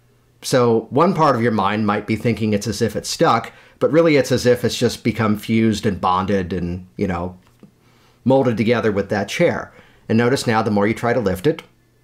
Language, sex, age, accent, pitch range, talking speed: English, male, 40-59, American, 110-140 Hz, 215 wpm